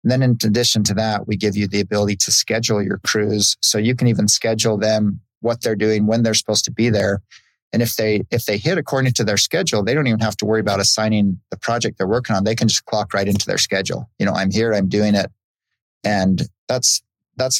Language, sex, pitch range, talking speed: English, male, 100-110 Hz, 240 wpm